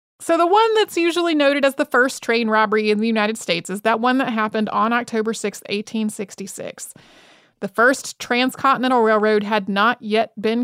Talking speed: 180 wpm